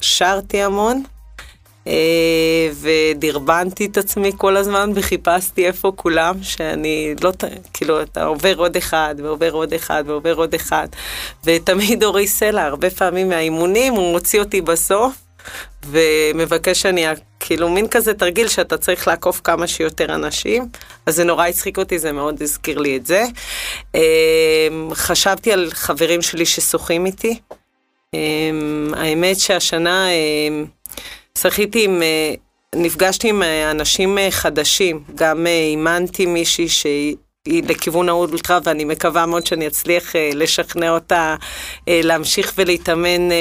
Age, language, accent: 30-49, Hebrew, native